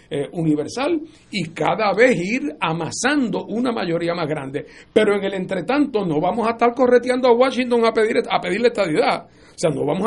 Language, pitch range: Spanish, 160-225 Hz